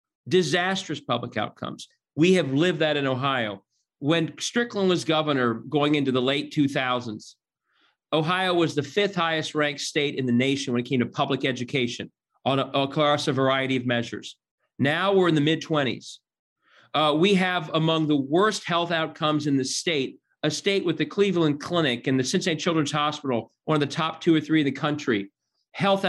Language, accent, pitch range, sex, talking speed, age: English, American, 135-170 Hz, male, 175 wpm, 40-59